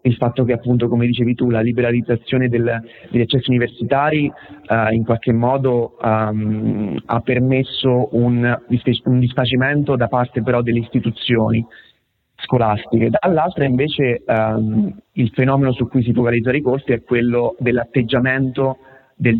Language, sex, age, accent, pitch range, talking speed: Italian, male, 30-49, native, 115-130 Hz, 135 wpm